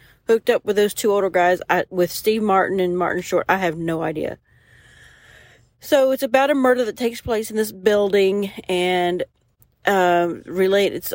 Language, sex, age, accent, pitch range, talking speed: English, female, 40-59, American, 165-210 Hz, 180 wpm